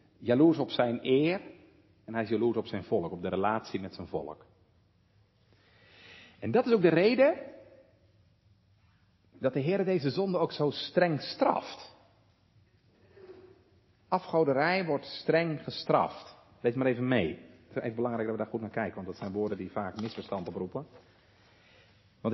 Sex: male